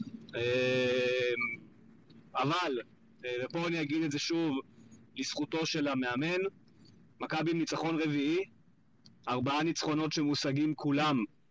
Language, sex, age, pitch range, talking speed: Hebrew, male, 30-49, 135-160 Hz, 100 wpm